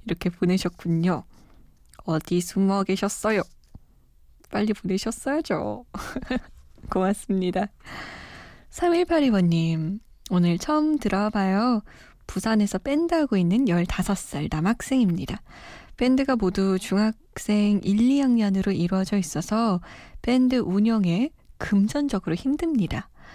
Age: 20-39